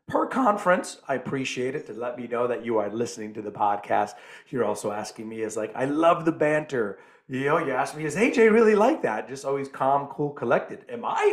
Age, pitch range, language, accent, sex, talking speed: 40-59, 120-190 Hz, English, American, male, 230 wpm